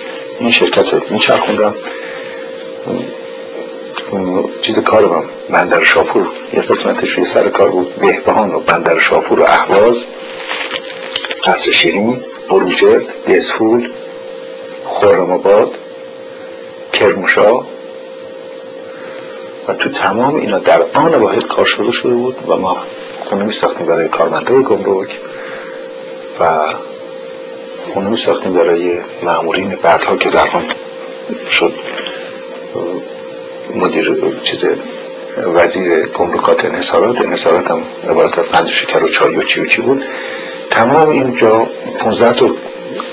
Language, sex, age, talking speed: Persian, male, 60-79, 110 wpm